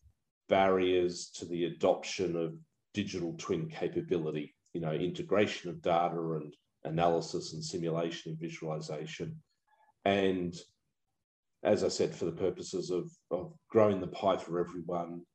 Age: 40-59